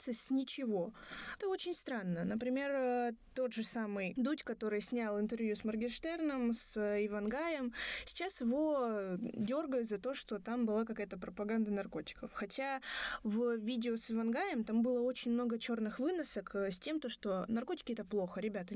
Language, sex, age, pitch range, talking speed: Russian, female, 20-39, 215-270 Hz, 150 wpm